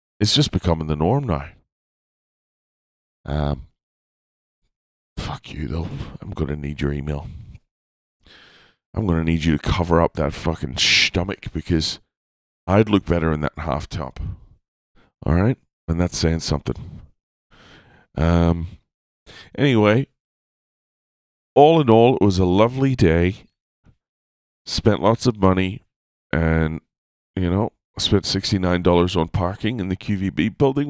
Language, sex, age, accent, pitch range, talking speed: English, male, 40-59, American, 80-110 Hz, 130 wpm